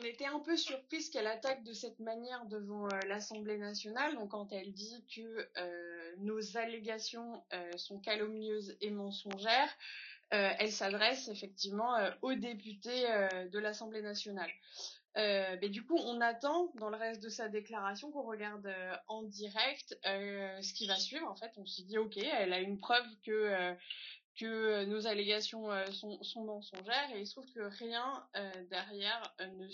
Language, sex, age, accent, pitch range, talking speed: English, female, 20-39, French, 200-230 Hz, 170 wpm